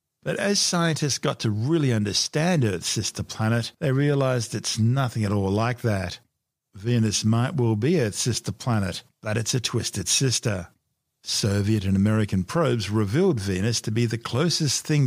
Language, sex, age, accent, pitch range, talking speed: English, male, 50-69, Australian, 110-145 Hz, 165 wpm